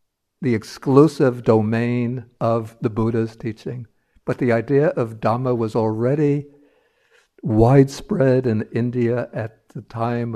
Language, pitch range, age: English, 110-135 Hz, 60-79